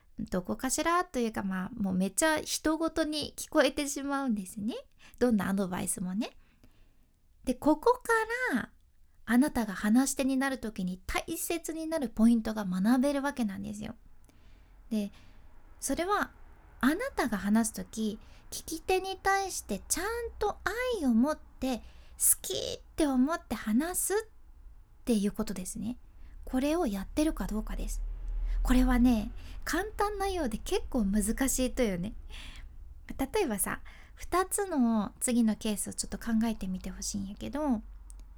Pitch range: 210-320 Hz